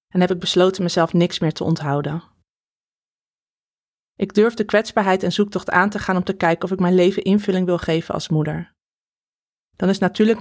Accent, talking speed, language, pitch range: Dutch, 190 wpm, Dutch, 175-195 Hz